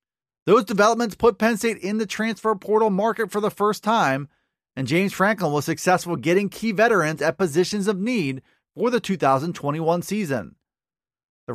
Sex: male